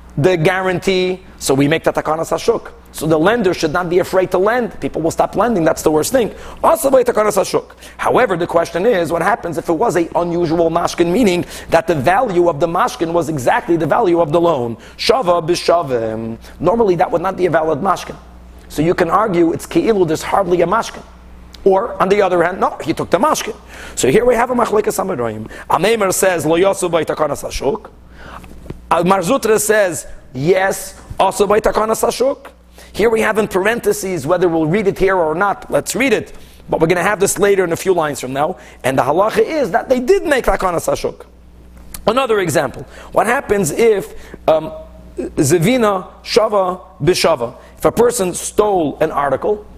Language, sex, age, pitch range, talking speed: English, male, 40-59, 165-210 Hz, 185 wpm